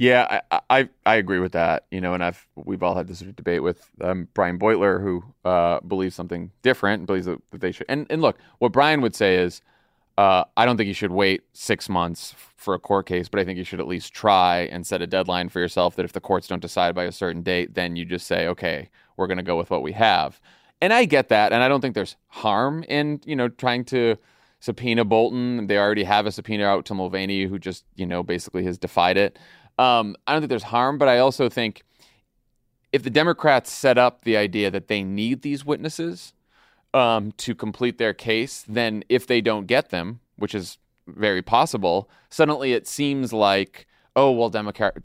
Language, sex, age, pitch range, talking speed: English, male, 30-49, 95-125 Hz, 220 wpm